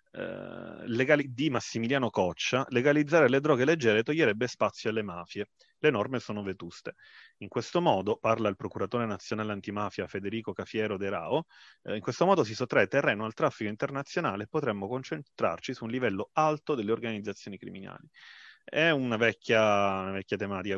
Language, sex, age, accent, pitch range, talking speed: Italian, male, 30-49, native, 100-125 Hz, 150 wpm